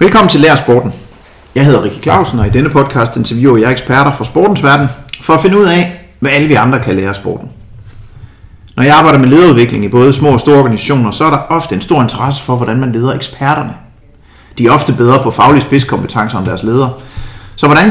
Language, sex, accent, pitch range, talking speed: Danish, male, native, 110-145 Hz, 220 wpm